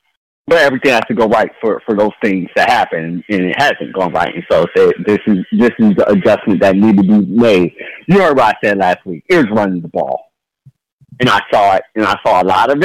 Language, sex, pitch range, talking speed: English, male, 100-160 Hz, 245 wpm